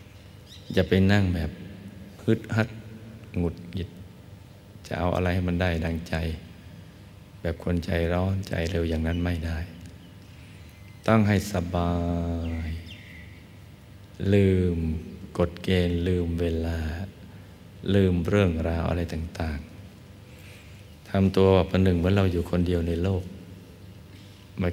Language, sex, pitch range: Thai, male, 85-100 Hz